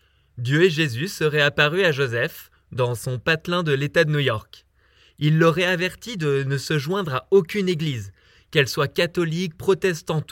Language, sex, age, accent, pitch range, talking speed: French, male, 20-39, French, 130-175 Hz, 170 wpm